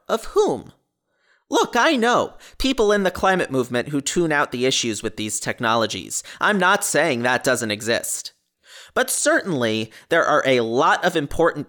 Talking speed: 165 wpm